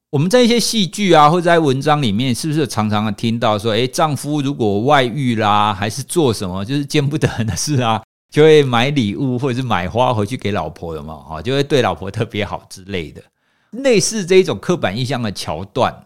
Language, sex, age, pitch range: Chinese, male, 50-69, 105-165 Hz